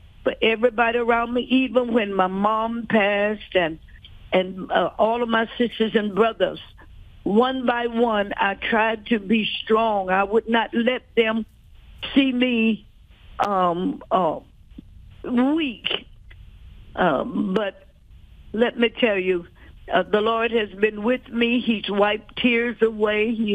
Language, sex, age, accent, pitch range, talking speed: English, female, 60-79, American, 200-250 Hz, 140 wpm